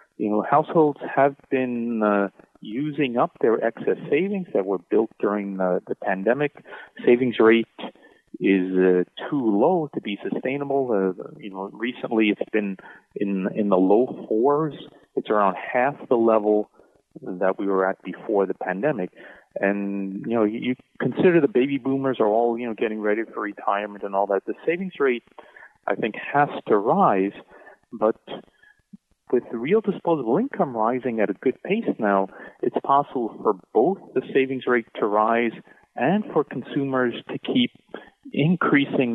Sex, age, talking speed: male, 40-59, 160 wpm